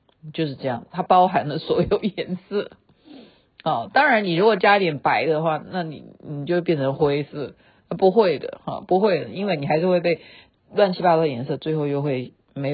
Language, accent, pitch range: Chinese, native, 140-185 Hz